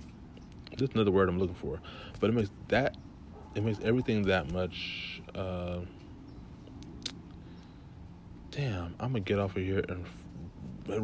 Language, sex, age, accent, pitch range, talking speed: English, male, 30-49, American, 90-105 Hz, 130 wpm